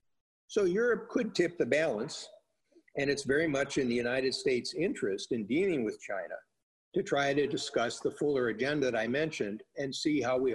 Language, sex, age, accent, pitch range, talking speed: English, male, 50-69, American, 110-175 Hz, 190 wpm